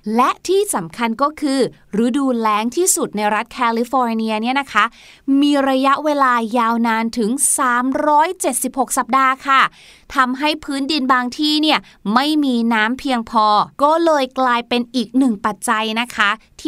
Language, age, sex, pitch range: Thai, 20-39, female, 220-275 Hz